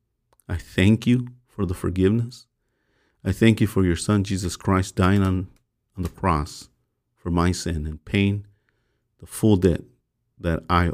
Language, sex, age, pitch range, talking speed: English, male, 50-69, 90-120 Hz, 160 wpm